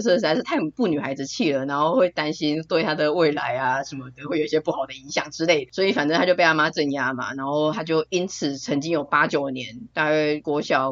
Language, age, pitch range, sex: Chinese, 30-49, 140-175 Hz, female